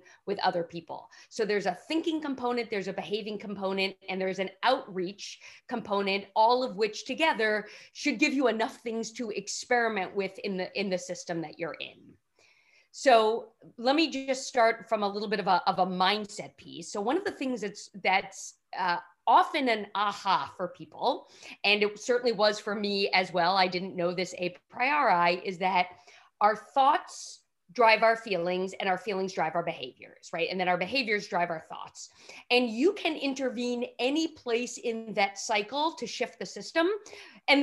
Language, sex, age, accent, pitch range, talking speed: English, female, 40-59, American, 185-245 Hz, 180 wpm